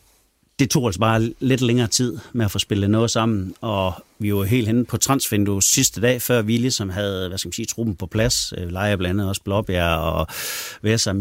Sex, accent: male, native